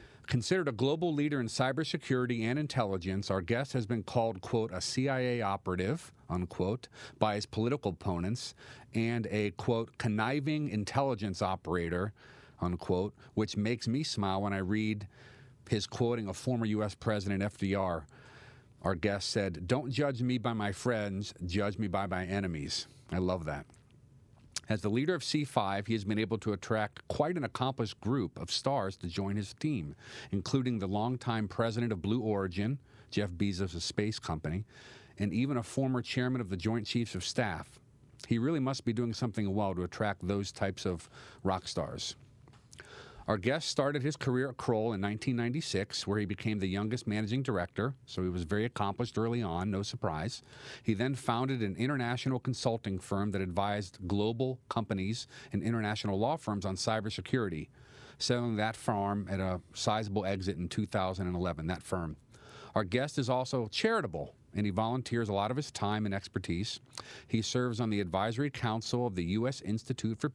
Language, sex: English, male